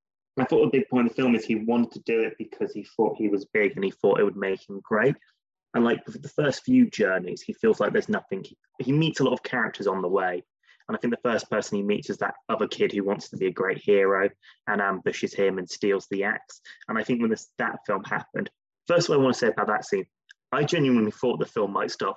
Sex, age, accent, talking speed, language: male, 20-39, British, 270 wpm, English